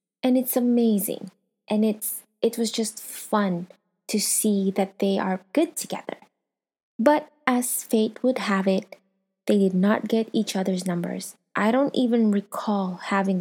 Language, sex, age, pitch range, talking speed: English, female, 20-39, 195-240 Hz, 150 wpm